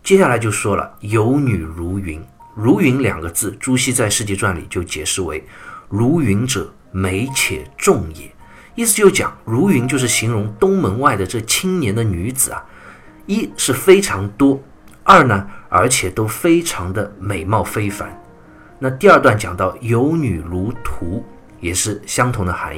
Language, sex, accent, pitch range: Chinese, male, native, 95-130 Hz